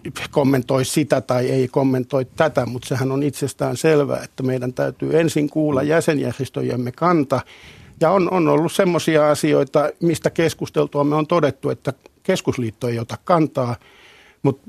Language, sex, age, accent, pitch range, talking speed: Finnish, male, 50-69, native, 125-150 Hz, 140 wpm